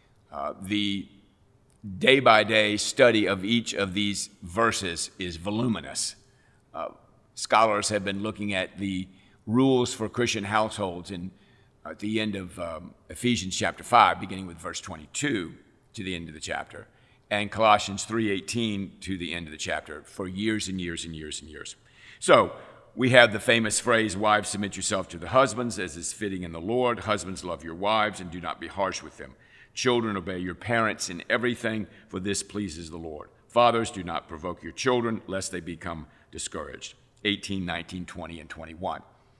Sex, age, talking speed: male, 50-69, 170 wpm